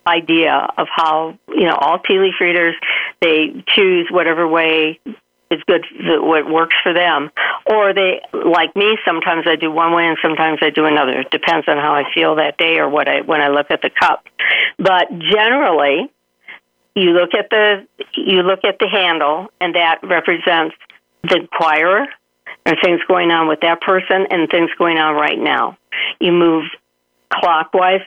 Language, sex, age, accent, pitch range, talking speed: English, female, 60-79, American, 160-195 Hz, 175 wpm